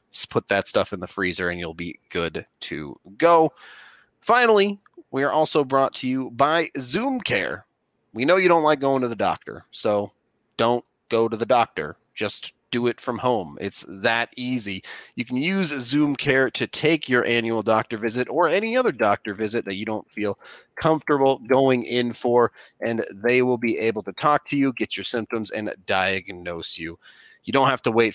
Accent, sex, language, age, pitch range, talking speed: American, male, English, 30-49, 105-135 Hz, 190 wpm